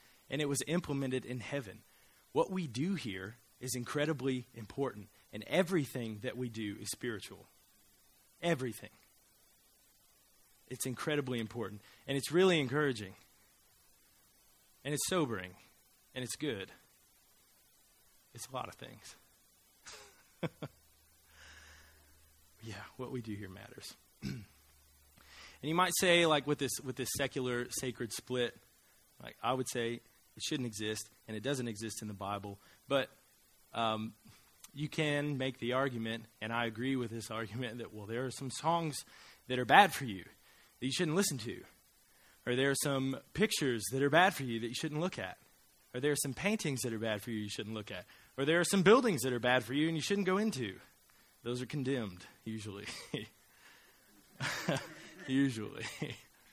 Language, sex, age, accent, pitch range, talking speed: English, male, 20-39, American, 110-140 Hz, 160 wpm